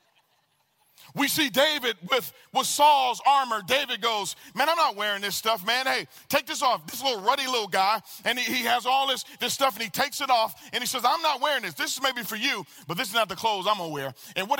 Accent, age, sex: American, 40-59, male